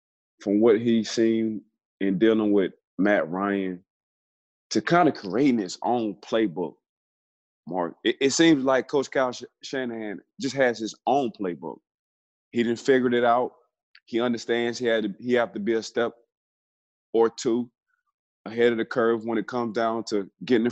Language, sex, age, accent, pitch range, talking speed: English, male, 20-39, American, 100-120 Hz, 160 wpm